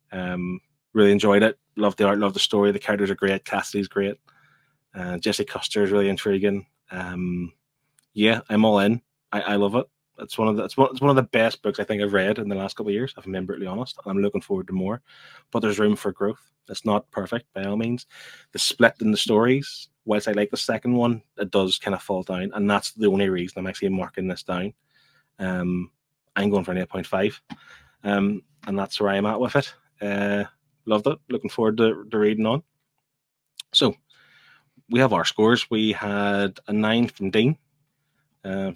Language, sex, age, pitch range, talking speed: English, male, 20-39, 100-120 Hz, 215 wpm